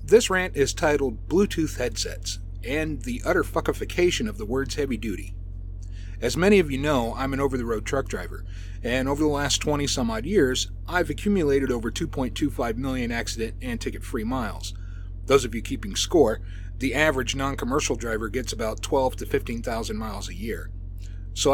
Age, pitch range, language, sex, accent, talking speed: 30-49, 90-140 Hz, English, male, American, 160 wpm